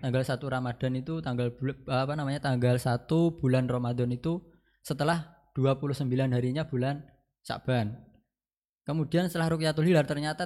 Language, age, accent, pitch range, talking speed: Indonesian, 20-39, native, 120-150 Hz, 125 wpm